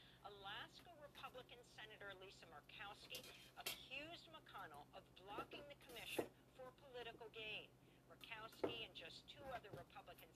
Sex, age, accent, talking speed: female, 50-69, American, 115 wpm